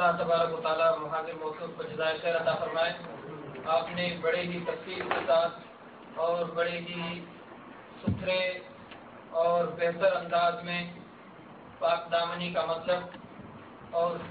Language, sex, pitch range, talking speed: Urdu, male, 165-190 Hz, 95 wpm